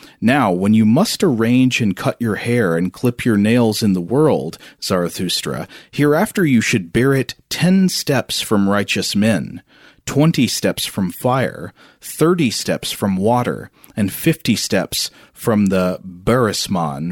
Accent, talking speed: American, 145 wpm